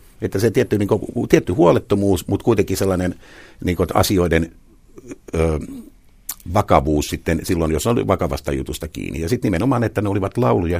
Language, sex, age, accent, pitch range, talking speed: Finnish, male, 60-79, native, 80-95 Hz, 160 wpm